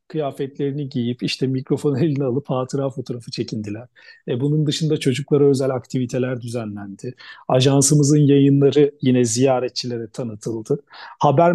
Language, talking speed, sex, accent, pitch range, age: Turkish, 115 wpm, male, native, 135-170 Hz, 40-59